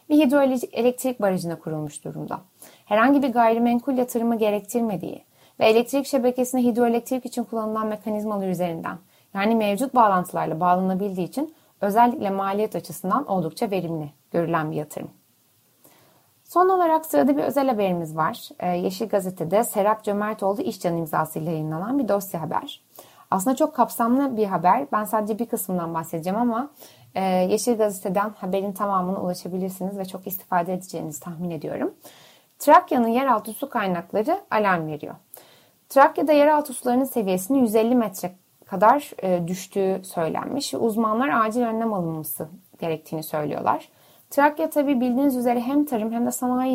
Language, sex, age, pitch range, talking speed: Turkish, female, 30-49, 180-245 Hz, 130 wpm